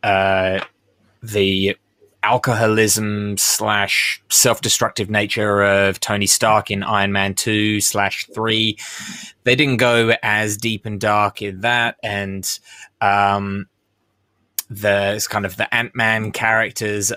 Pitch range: 105-135 Hz